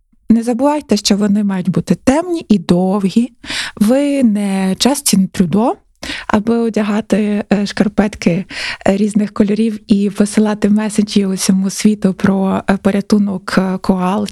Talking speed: 115 wpm